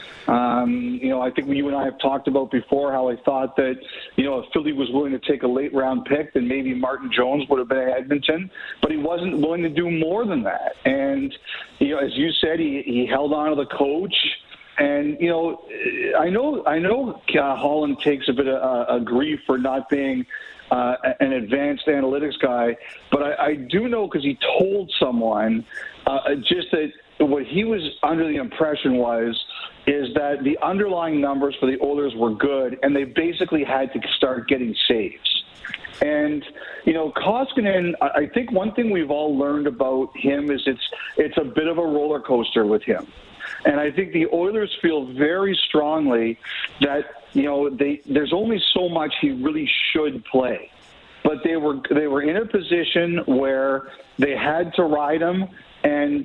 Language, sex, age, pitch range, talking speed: English, male, 50-69, 135-185 Hz, 185 wpm